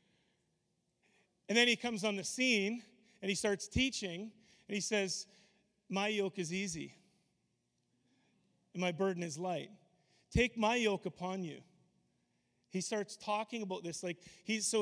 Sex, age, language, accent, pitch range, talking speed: male, 30-49, English, American, 175-215 Hz, 145 wpm